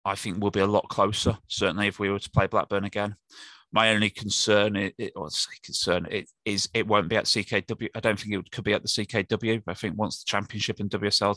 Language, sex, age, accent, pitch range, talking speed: English, male, 20-39, British, 100-110 Hz, 250 wpm